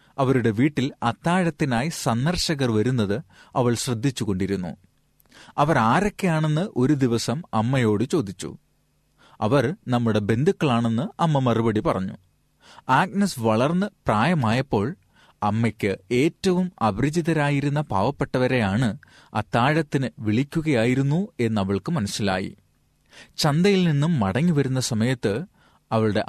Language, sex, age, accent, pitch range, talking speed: Malayalam, male, 30-49, native, 110-150 Hz, 80 wpm